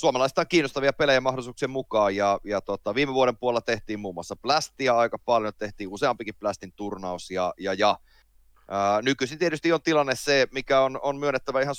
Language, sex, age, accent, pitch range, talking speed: Finnish, male, 30-49, native, 90-120 Hz, 185 wpm